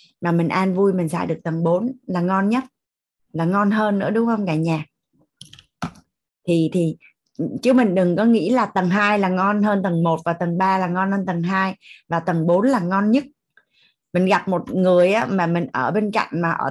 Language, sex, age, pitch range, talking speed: Vietnamese, female, 20-39, 175-220 Hz, 215 wpm